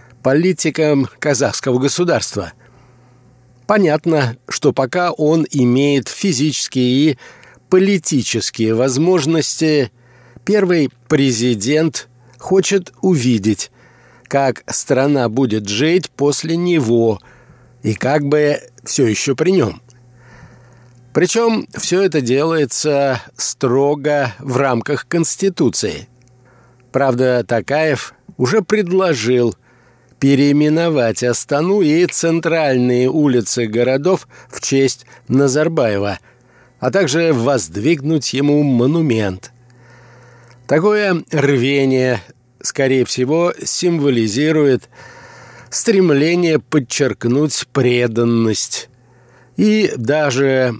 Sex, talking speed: male, 75 wpm